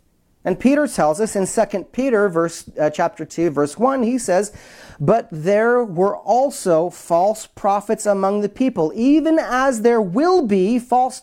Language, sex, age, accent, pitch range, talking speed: English, male, 40-59, American, 150-245 Hz, 160 wpm